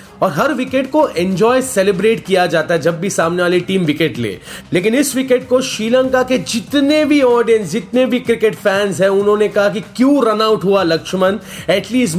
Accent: native